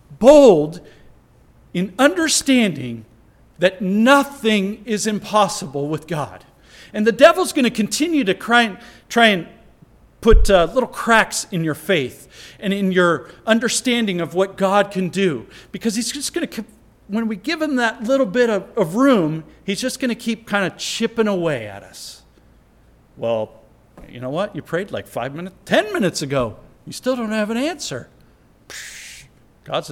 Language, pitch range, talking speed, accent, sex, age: English, 150-235 Hz, 160 wpm, American, male, 50-69